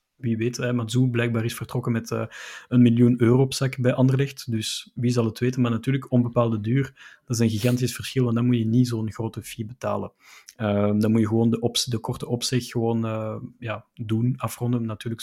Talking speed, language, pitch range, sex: 215 wpm, Dutch, 115-125 Hz, male